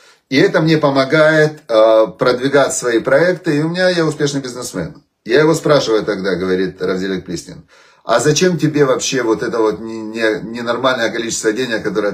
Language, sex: Russian, male